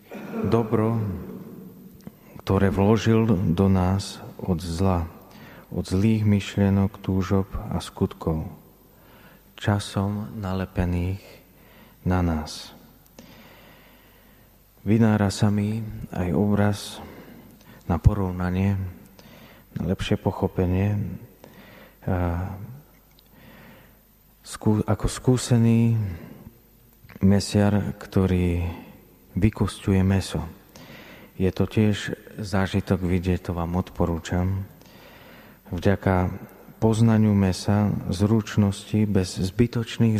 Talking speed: 70 wpm